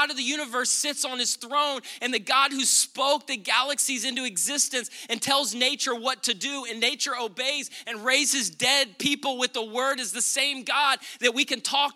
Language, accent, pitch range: English, American, 175-265 Hz